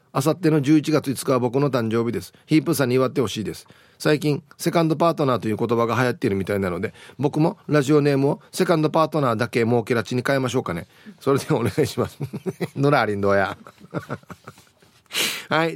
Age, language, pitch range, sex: 40-59, Japanese, 125-165 Hz, male